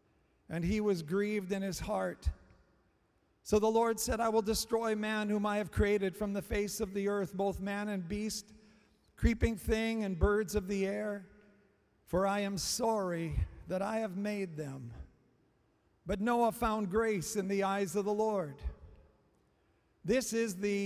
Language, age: English, 50-69